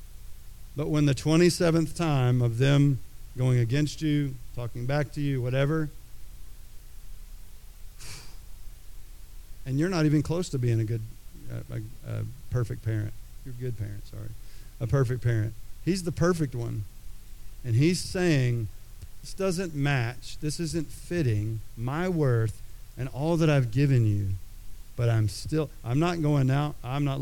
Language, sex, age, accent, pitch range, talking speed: English, male, 40-59, American, 115-155 Hz, 145 wpm